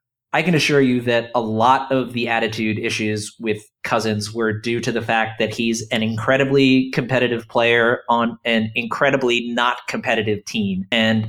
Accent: American